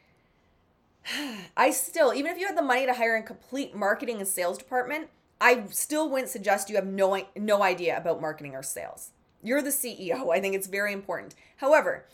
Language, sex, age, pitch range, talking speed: English, female, 20-39, 185-250 Hz, 190 wpm